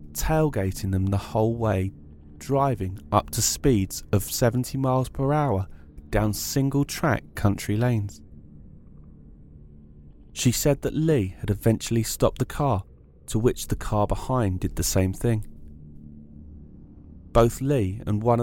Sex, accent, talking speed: male, British, 130 wpm